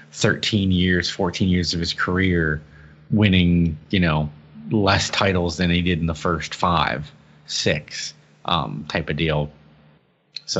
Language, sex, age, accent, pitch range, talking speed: English, male, 30-49, American, 80-95 Hz, 140 wpm